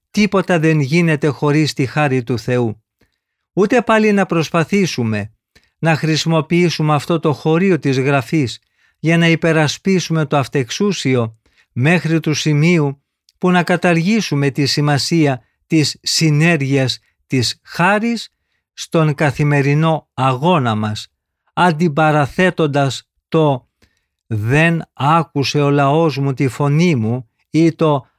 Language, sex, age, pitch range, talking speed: Greek, male, 50-69, 135-175 Hz, 110 wpm